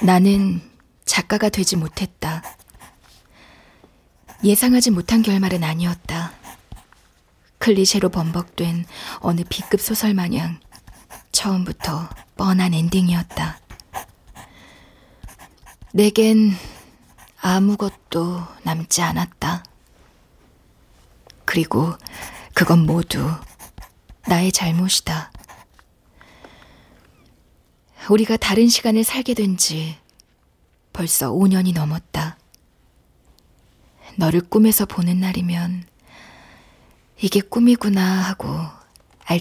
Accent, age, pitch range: native, 20-39, 165-200 Hz